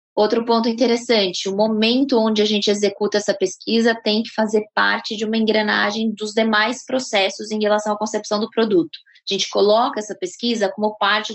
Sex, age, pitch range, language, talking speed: female, 20-39, 200-225 Hz, Portuguese, 180 wpm